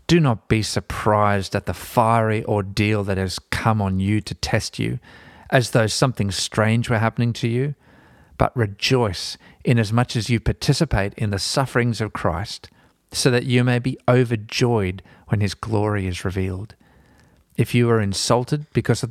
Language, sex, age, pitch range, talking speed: English, male, 40-59, 95-120 Hz, 165 wpm